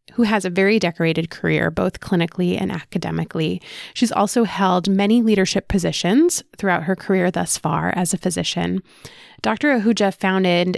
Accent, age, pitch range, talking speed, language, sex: American, 20-39, 180-220 Hz, 150 wpm, English, female